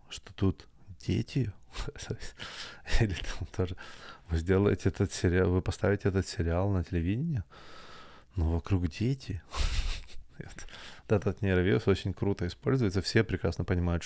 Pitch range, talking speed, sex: 90-100 Hz, 115 wpm, male